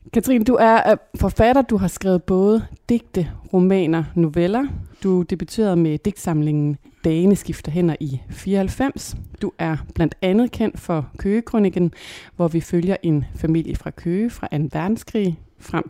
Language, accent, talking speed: Danish, native, 145 wpm